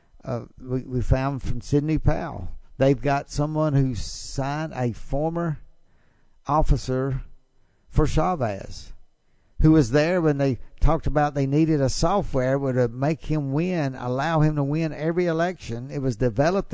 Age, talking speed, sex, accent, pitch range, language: 60-79, 145 wpm, male, American, 125-155 Hz, English